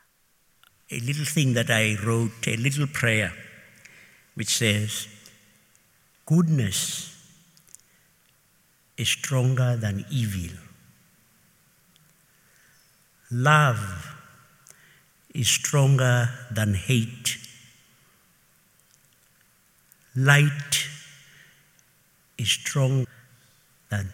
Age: 60-79